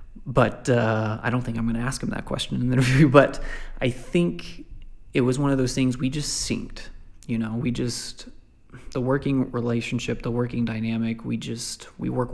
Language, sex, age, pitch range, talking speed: English, male, 20-39, 115-125 Hz, 200 wpm